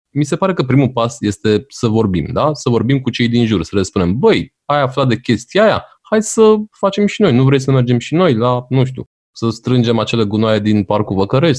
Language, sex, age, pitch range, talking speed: Romanian, male, 20-39, 105-165 Hz, 240 wpm